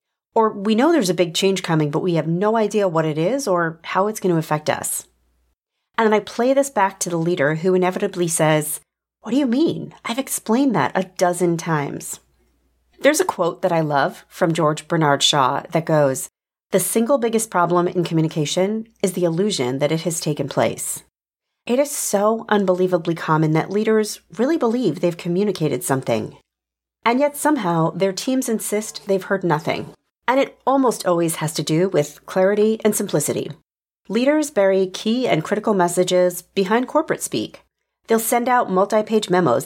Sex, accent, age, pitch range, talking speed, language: female, American, 40-59, 160-220 Hz, 175 wpm, English